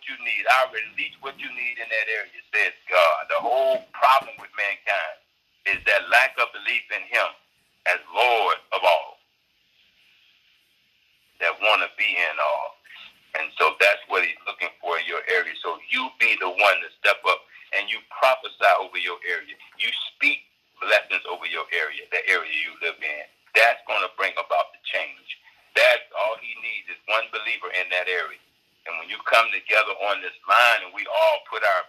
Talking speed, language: 185 wpm, English